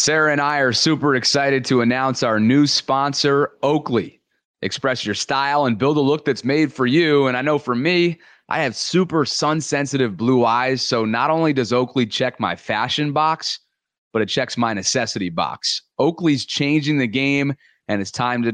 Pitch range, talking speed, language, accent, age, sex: 115-140 Hz, 185 wpm, English, American, 30-49, male